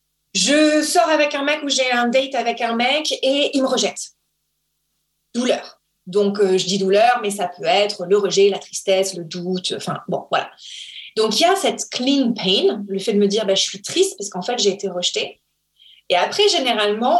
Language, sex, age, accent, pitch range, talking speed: French, female, 30-49, French, 195-270 Hz, 215 wpm